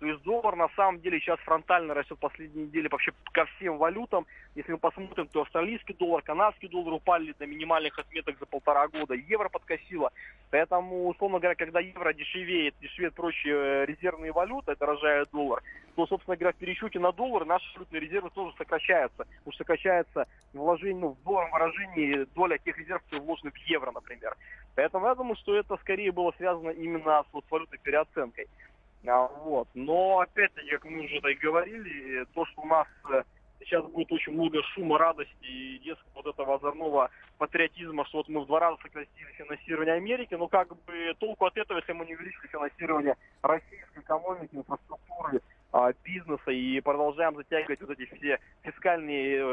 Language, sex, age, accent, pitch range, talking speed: Russian, male, 20-39, native, 145-175 Hz, 170 wpm